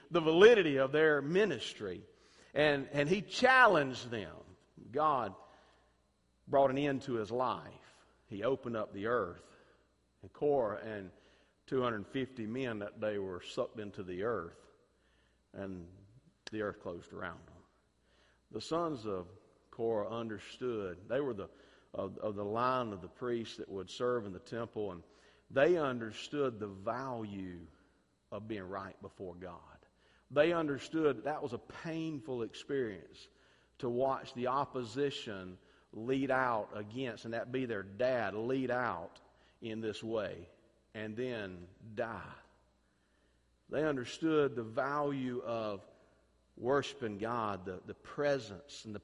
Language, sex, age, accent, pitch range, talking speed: English, male, 50-69, American, 100-140 Hz, 135 wpm